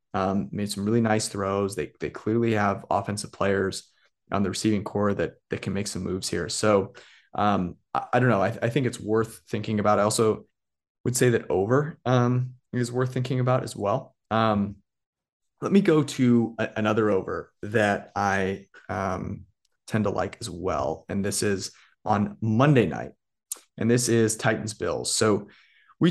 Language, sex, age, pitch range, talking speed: English, male, 30-49, 100-115 Hz, 180 wpm